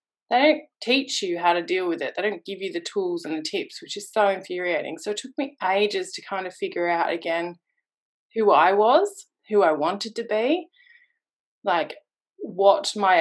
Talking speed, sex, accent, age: 200 wpm, female, Australian, 20-39